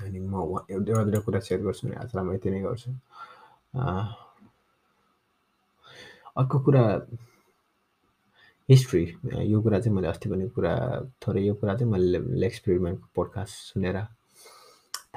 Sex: male